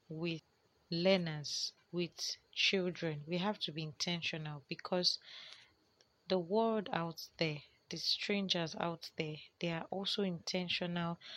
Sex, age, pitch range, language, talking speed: female, 30-49, 155-180 Hz, English, 115 wpm